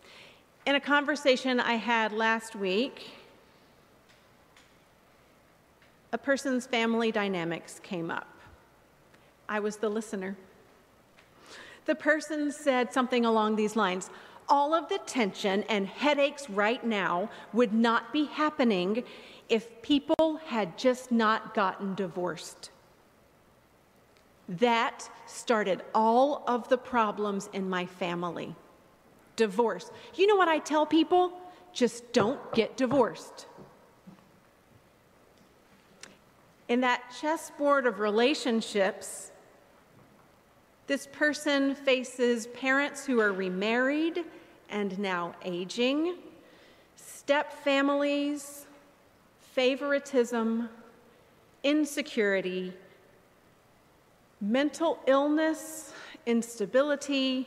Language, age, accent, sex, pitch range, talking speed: English, 40-59, American, female, 210-285 Hz, 90 wpm